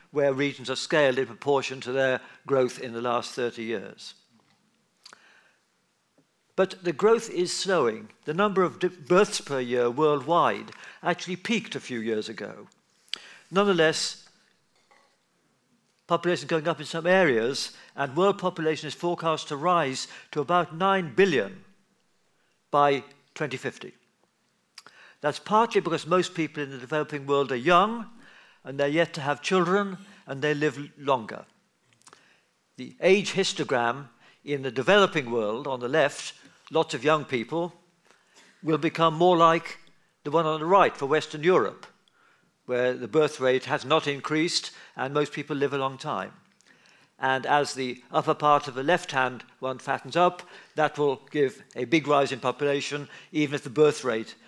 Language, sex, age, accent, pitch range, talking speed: English, male, 50-69, British, 135-175 Hz, 155 wpm